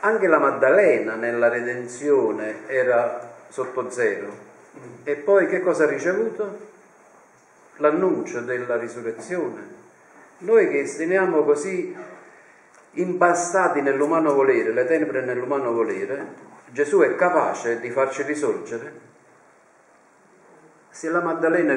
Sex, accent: male, native